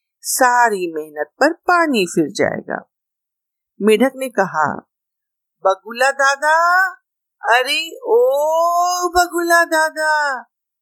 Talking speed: 85 wpm